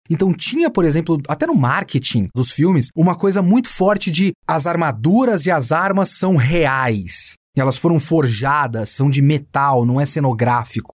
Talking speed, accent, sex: 170 wpm, Brazilian, male